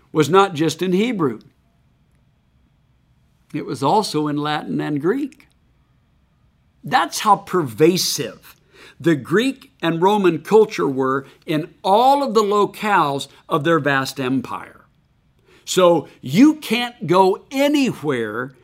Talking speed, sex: 115 wpm, male